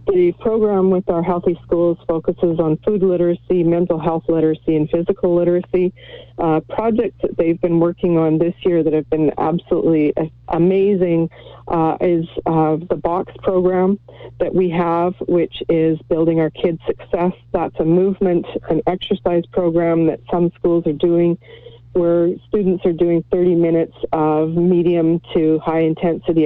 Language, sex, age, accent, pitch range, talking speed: English, female, 40-59, American, 160-185 Hz, 150 wpm